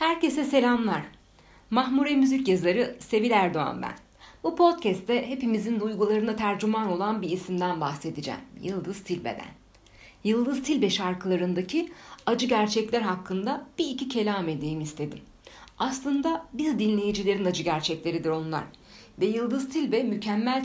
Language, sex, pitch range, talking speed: Turkish, female, 175-250 Hz, 115 wpm